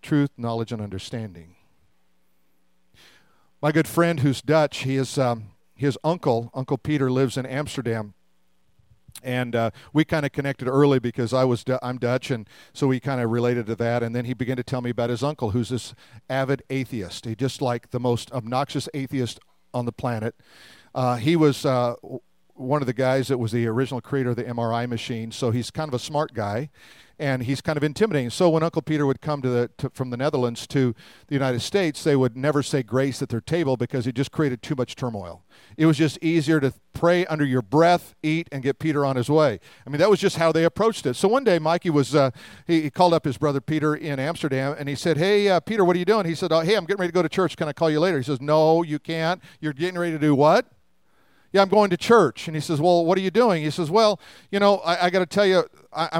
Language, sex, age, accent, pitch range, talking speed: English, male, 50-69, American, 125-165 Hz, 240 wpm